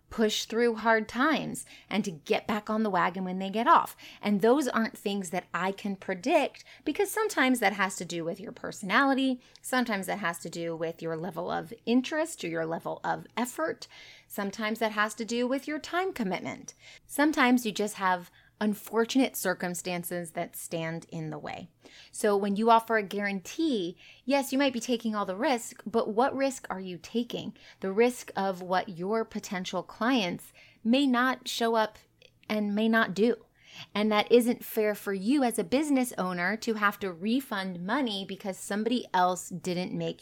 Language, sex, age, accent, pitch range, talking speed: English, female, 30-49, American, 185-245 Hz, 180 wpm